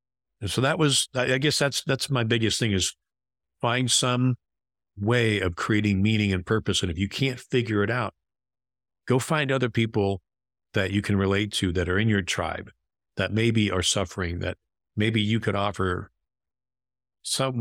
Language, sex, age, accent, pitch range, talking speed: English, male, 50-69, American, 95-115 Hz, 175 wpm